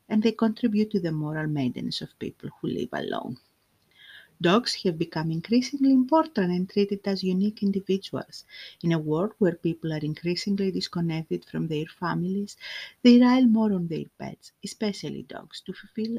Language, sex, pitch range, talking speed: English, female, 160-225 Hz, 160 wpm